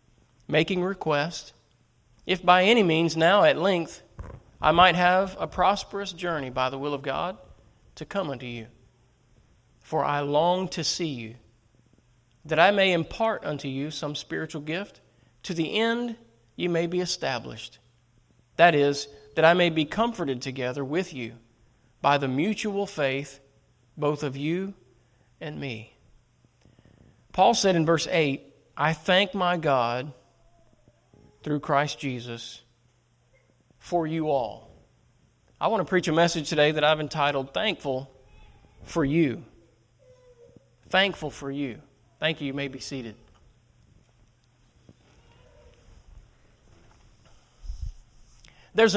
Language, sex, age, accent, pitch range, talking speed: English, male, 40-59, American, 120-175 Hz, 125 wpm